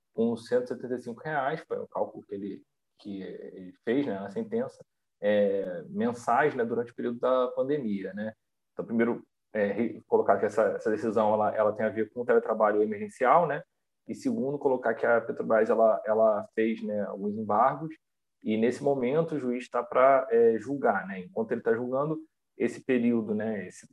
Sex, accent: male, Brazilian